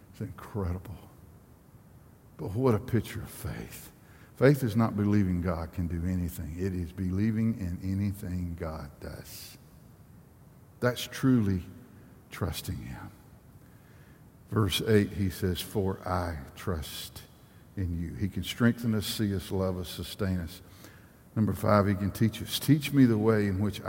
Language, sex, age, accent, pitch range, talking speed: English, male, 60-79, American, 95-135 Hz, 145 wpm